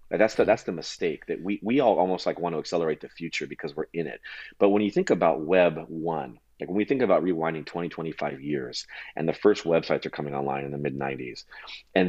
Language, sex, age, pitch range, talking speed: English, male, 30-49, 80-105 Hz, 245 wpm